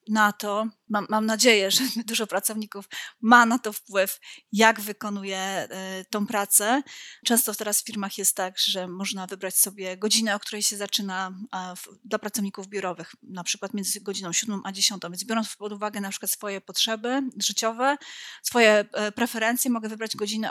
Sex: female